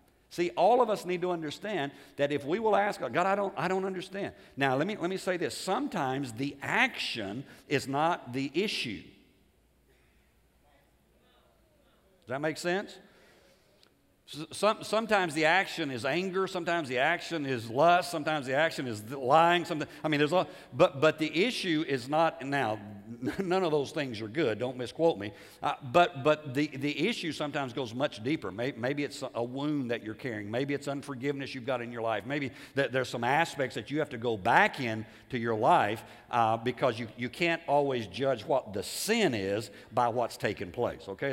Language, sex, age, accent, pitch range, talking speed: English, male, 60-79, American, 120-165 Hz, 190 wpm